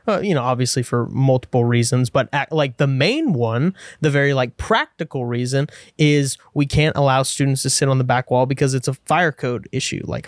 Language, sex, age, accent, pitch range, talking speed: English, male, 20-39, American, 130-160 Hz, 205 wpm